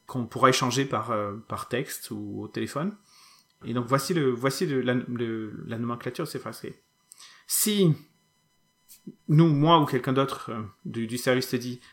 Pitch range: 125-165 Hz